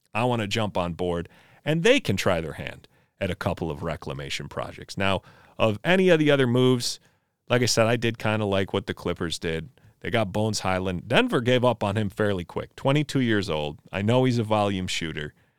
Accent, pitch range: American, 95-135 Hz